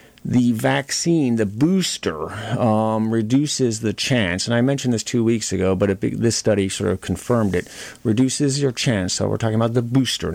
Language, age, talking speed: English, 30-49, 180 wpm